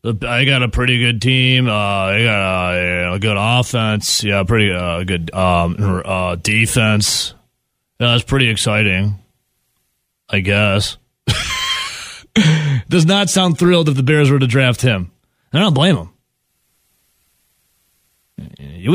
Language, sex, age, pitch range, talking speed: English, male, 30-49, 105-135 Hz, 130 wpm